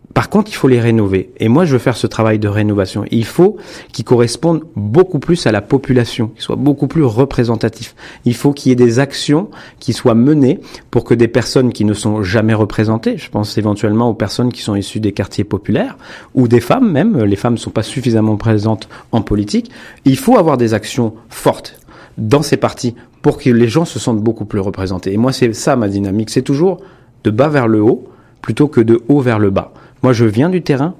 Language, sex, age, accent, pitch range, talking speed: French, male, 40-59, French, 110-140 Hz, 225 wpm